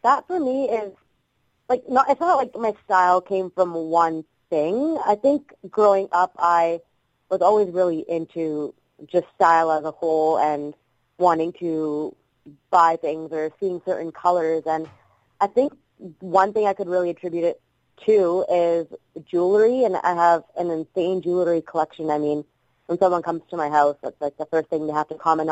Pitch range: 155-185 Hz